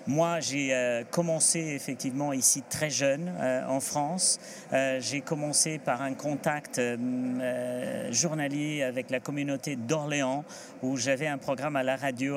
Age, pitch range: 50-69, 135-165 Hz